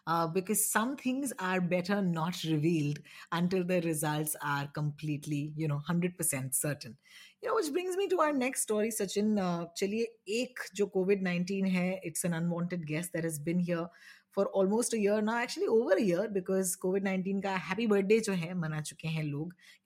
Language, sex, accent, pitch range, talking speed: Hindi, female, native, 165-220 Hz, 160 wpm